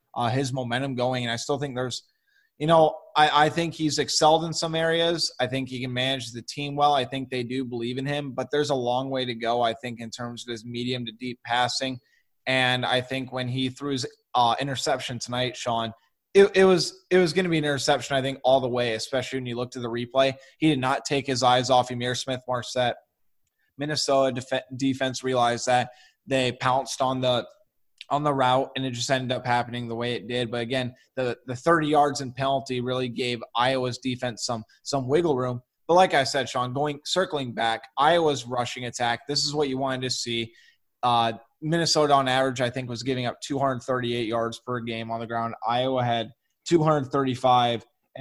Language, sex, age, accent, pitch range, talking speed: English, male, 20-39, American, 120-140 Hz, 210 wpm